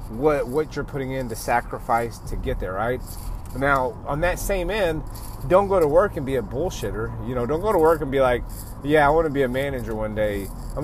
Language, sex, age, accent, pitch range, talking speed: English, male, 30-49, American, 115-155 Hz, 240 wpm